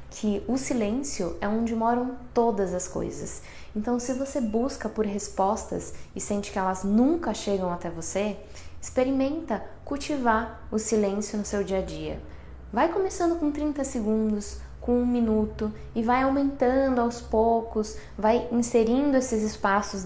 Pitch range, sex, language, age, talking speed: 205-250 Hz, female, Portuguese, 10-29, 140 wpm